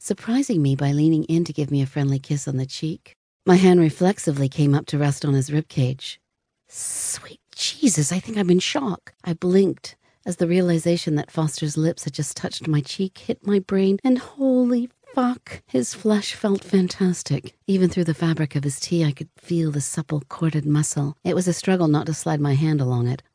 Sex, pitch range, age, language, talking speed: female, 135-175 Hz, 50-69, English, 205 wpm